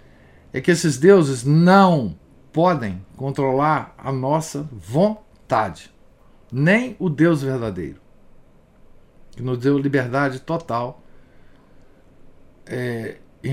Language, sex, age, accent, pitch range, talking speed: Portuguese, male, 50-69, Brazilian, 110-165 Hz, 90 wpm